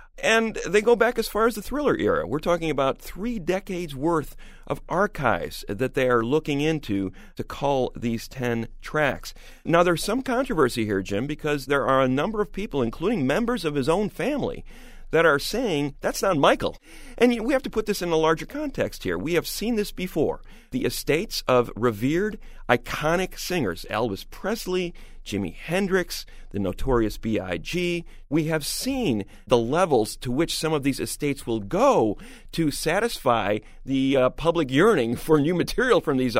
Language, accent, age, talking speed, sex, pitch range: English, American, 40-59, 175 wpm, male, 125-205 Hz